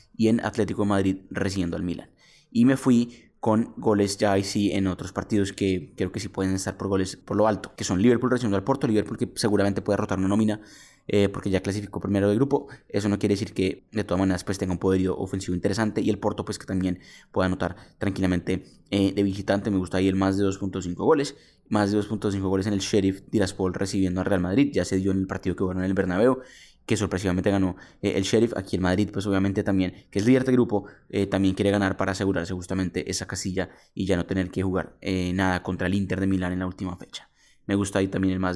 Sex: male